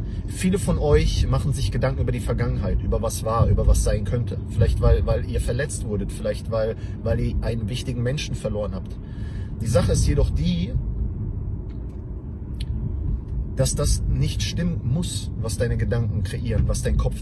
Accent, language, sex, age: German, English, male, 40-59